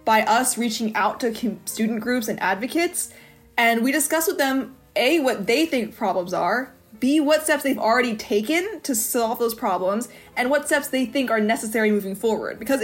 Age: 20-39